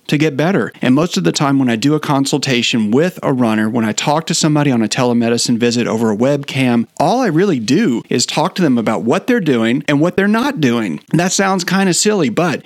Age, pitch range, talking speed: 40-59, 125-170 Hz, 240 wpm